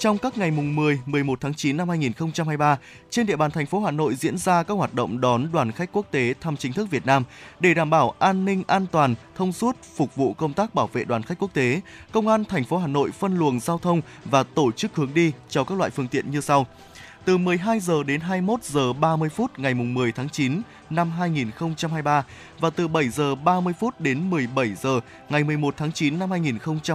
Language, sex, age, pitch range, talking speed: Vietnamese, male, 20-39, 140-185 Hz, 240 wpm